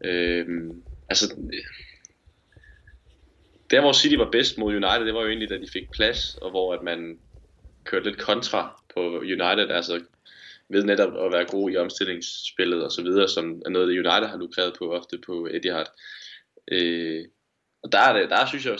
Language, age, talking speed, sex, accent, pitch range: Danish, 20-39, 180 wpm, male, native, 90-115 Hz